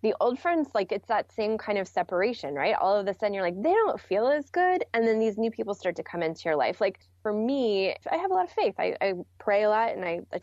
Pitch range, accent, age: 180-235 Hz, American, 20-39